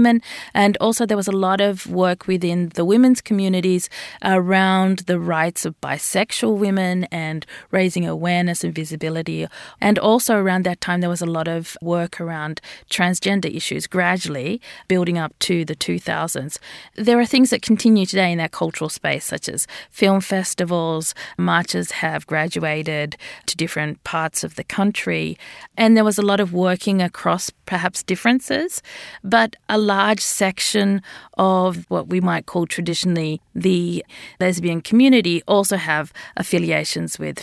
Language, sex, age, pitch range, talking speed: English, female, 40-59, 170-205 Hz, 150 wpm